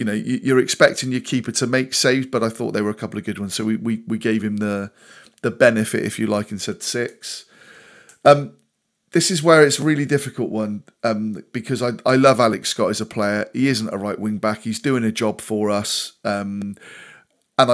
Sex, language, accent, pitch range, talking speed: male, English, British, 110-135 Hz, 225 wpm